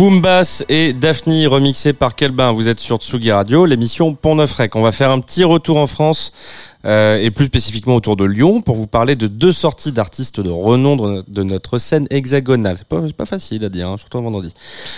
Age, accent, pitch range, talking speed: 20-39, French, 100-140 Hz, 230 wpm